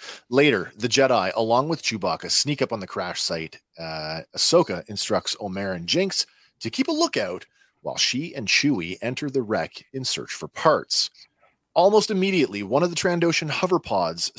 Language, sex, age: English, male, 40-59